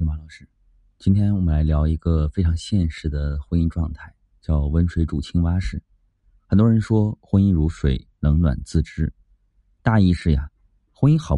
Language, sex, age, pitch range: Chinese, male, 30-49, 80-100 Hz